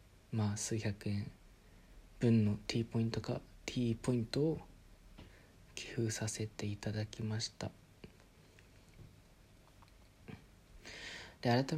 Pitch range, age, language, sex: 100-120 Hz, 40-59, Japanese, male